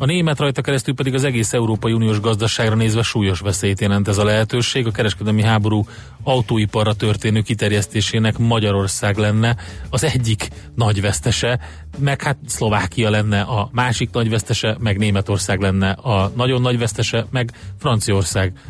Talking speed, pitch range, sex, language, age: 150 wpm, 105-125 Hz, male, Hungarian, 30-49